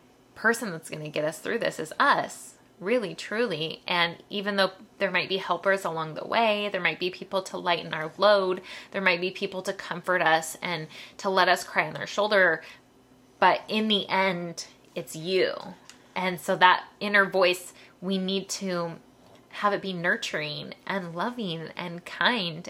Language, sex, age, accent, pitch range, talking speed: English, female, 20-39, American, 165-195 Hz, 175 wpm